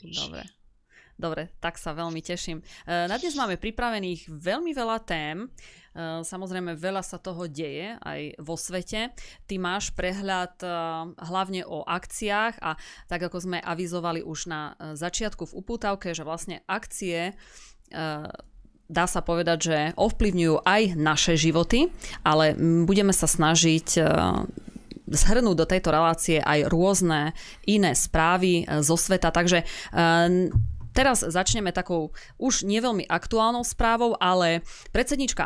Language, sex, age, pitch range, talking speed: Slovak, female, 20-39, 165-200 Hz, 120 wpm